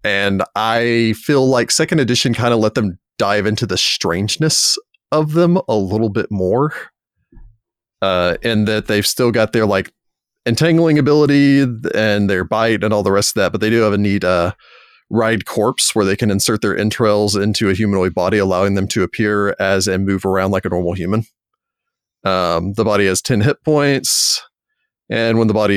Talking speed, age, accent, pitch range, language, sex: 190 wpm, 30-49, American, 95-115 Hz, English, male